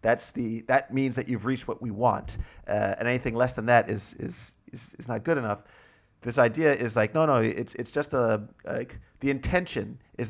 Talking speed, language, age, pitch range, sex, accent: 210 wpm, English, 40-59, 110-140 Hz, male, American